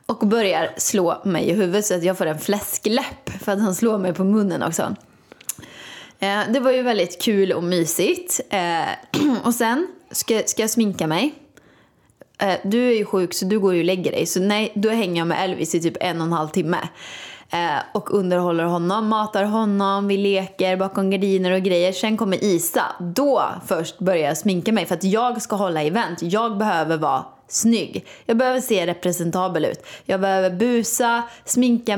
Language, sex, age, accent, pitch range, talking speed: Swedish, female, 20-39, native, 185-225 Hz, 190 wpm